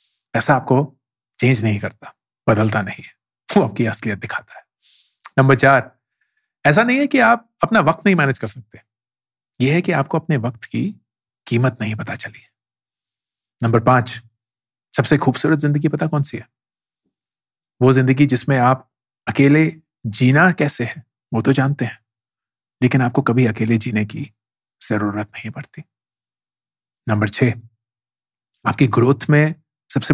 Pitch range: 110-140 Hz